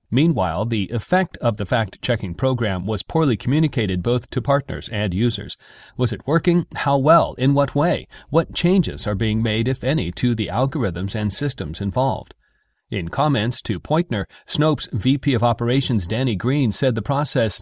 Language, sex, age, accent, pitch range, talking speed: English, male, 40-59, American, 105-135 Hz, 165 wpm